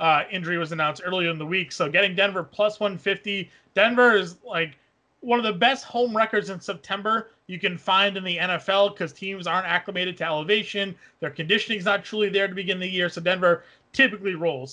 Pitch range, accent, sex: 180-230 Hz, American, male